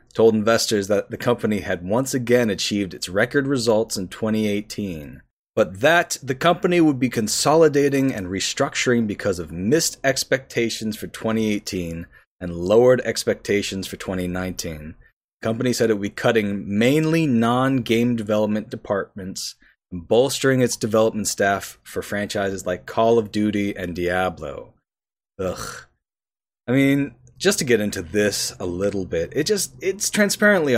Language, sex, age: English, male, 30-49